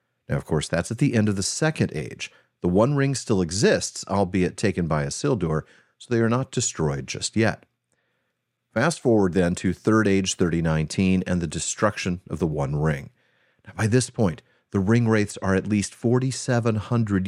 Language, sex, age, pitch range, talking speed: English, male, 40-59, 90-115 Hz, 180 wpm